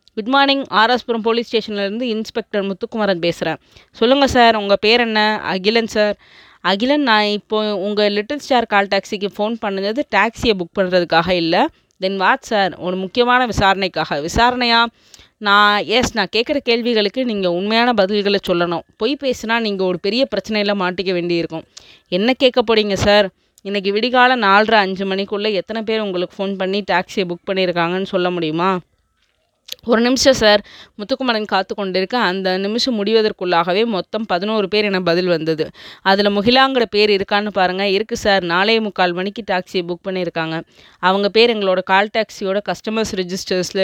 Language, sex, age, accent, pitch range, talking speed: Tamil, female, 20-39, native, 185-225 Hz, 145 wpm